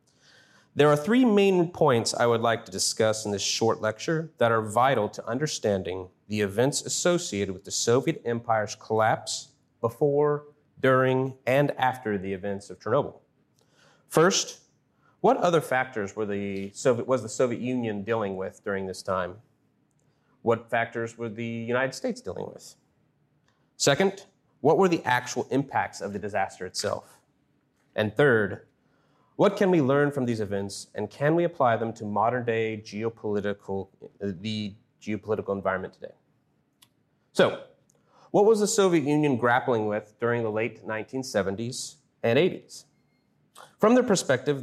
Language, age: English, 30-49